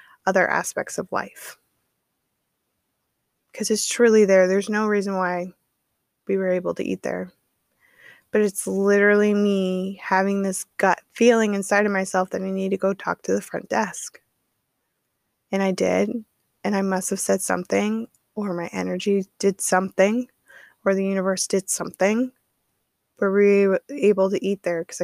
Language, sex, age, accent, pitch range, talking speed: English, female, 20-39, American, 180-210 Hz, 160 wpm